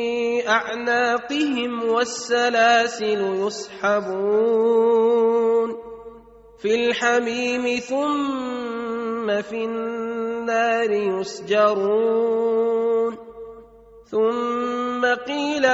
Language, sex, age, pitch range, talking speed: Arabic, male, 30-49, 205-235 Hz, 40 wpm